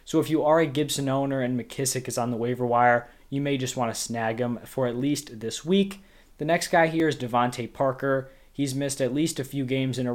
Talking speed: 250 wpm